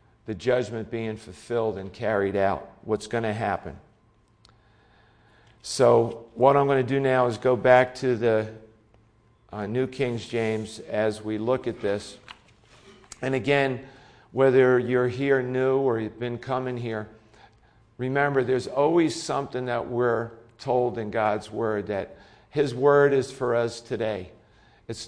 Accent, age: American, 50-69